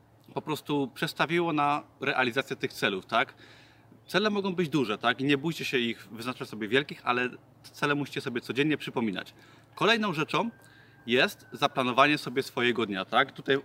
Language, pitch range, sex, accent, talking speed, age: Polish, 125-145 Hz, male, native, 160 wpm, 30-49